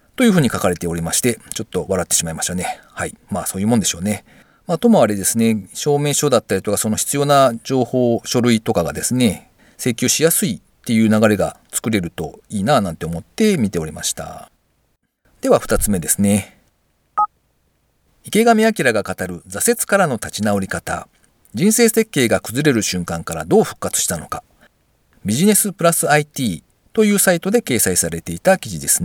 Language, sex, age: Japanese, male, 40-59